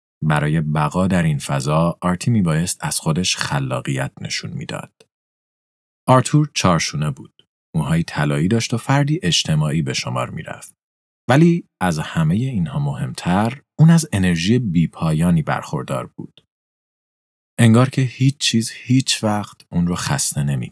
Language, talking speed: Persian, 130 wpm